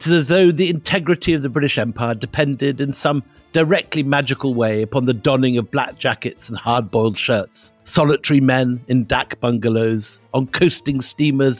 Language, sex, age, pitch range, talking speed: English, male, 60-79, 120-155 Hz, 165 wpm